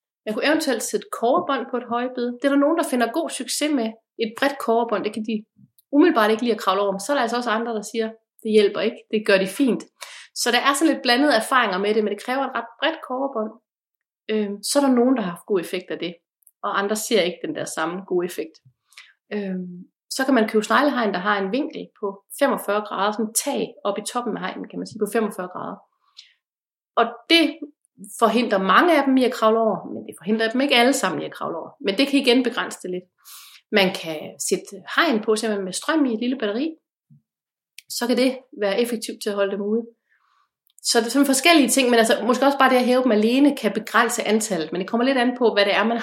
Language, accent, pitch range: Danish, native, 200-255 Hz